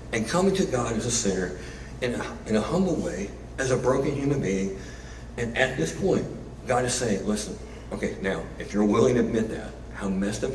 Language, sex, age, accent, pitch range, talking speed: English, male, 60-79, American, 100-130 Hz, 210 wpm